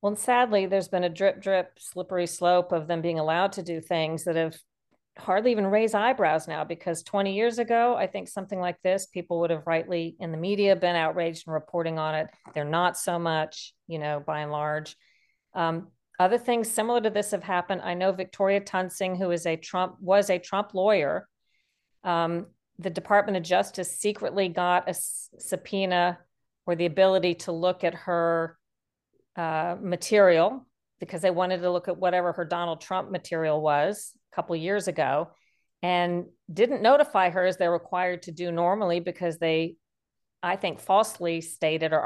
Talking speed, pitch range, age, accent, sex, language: 180 wpm, 170-195 Hz, 40-59, American, female, English